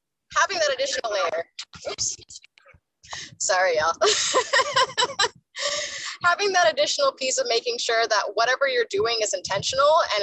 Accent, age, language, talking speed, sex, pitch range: American, 20-39, English, 125 wpm, female, 195-280 Hz